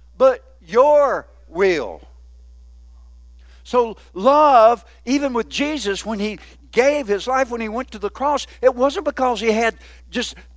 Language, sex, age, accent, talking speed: English, male, 60-79, American, 140 wpm